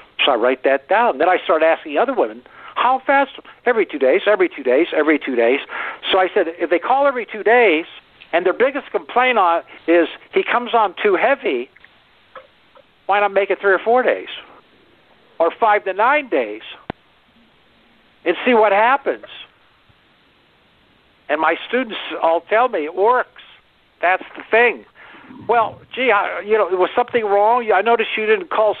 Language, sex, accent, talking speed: English, male, American, 175 wpm